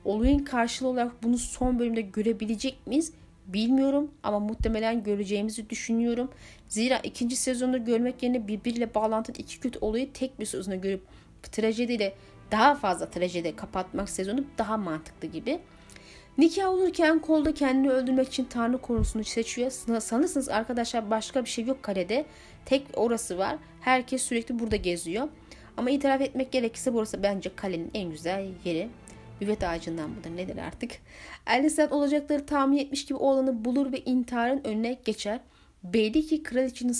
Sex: female